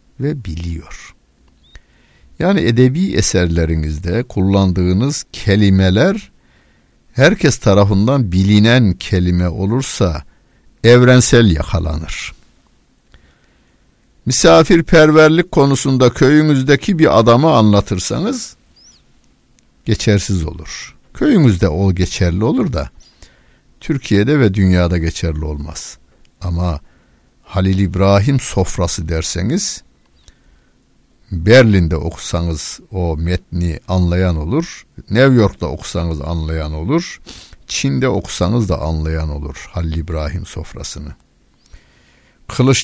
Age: 60-79